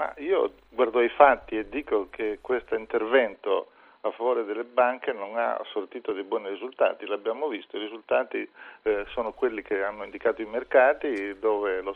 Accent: native